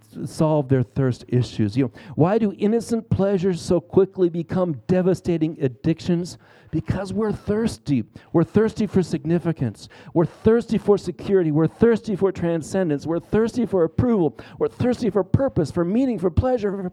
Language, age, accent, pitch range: English, 50-69, American, 125-180 Hz